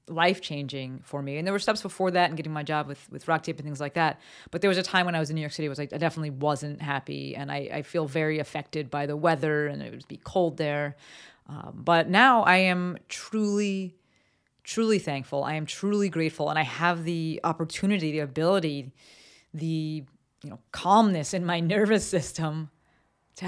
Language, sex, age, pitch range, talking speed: English, female, 30-49, 155-195 Hz, 210 wpm